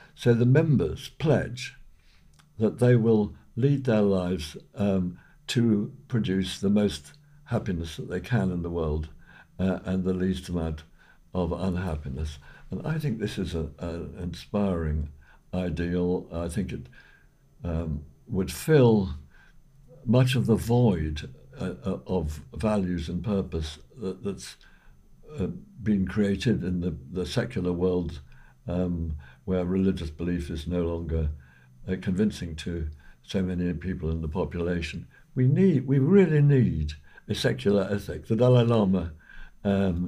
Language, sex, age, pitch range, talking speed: English, male, 60-79, 85-105 Hz, 130 wpm